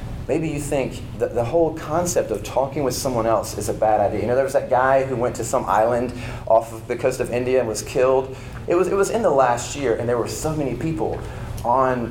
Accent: American